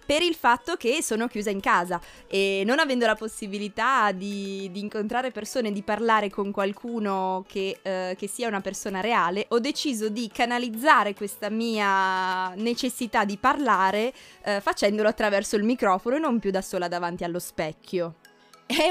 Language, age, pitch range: Italian, 20-39, 200-250 Hz